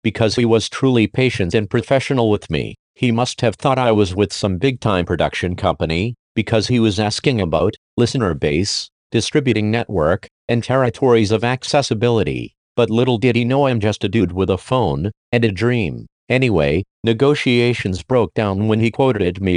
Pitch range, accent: 100-125 Hz, American